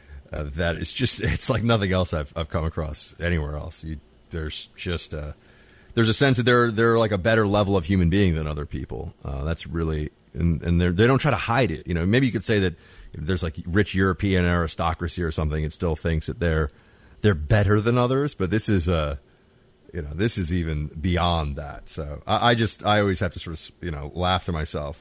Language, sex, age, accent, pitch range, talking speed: English, male, 30-49, American, 80-105 Hz, 225 wpm